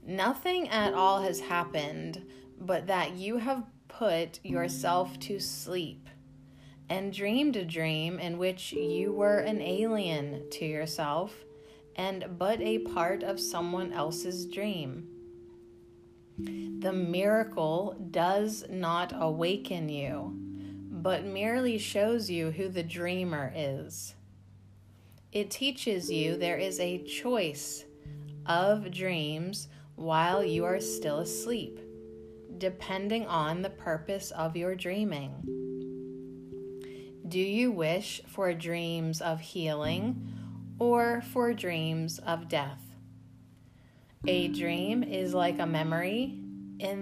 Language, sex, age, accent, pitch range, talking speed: English, female, 30-49, American, 130-190 Hz, 110 wpm